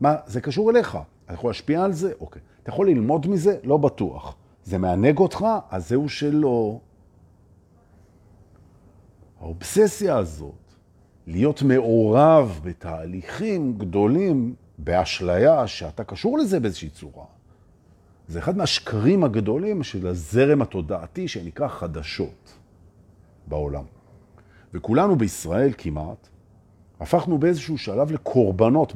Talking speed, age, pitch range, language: 100 wpm, 50-69, 90-135 Hz, Hebrew